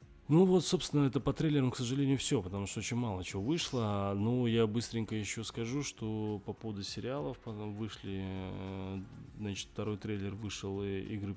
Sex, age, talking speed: male, 20-39, 165 wpm